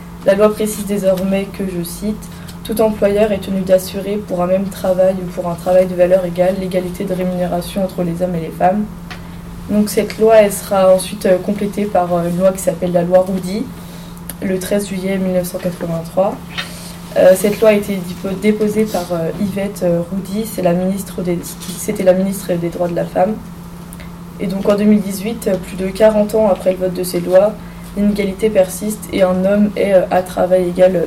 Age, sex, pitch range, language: 20-39, female, 175-200 Hz, French